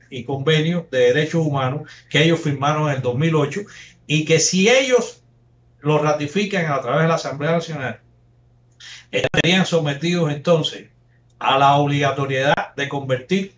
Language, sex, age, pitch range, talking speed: Spanish, male, 60-79, 130-170 Hz, 135 wpm